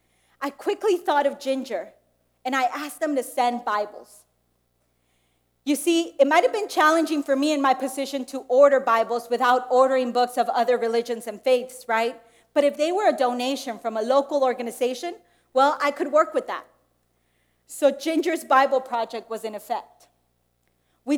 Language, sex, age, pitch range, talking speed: English, female, 30-49, 230-300 Hz, 170 wpm